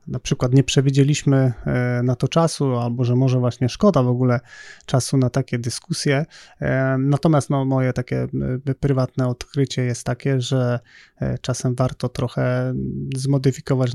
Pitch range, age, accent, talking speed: 130-145 Hz, 20-39, native, 130 wpm